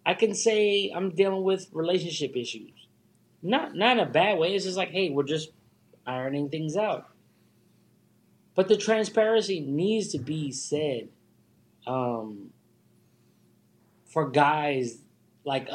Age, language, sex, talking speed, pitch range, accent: 20-39, English, male, 130 wpm, 125-160 Hz, American